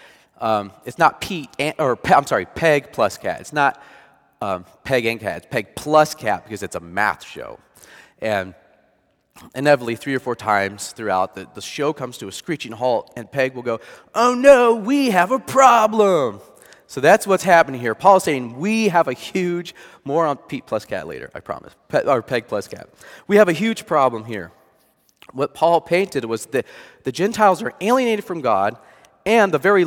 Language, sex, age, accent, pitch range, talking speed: English, male, 30-49, American, 110-170 Hz, 185 wpm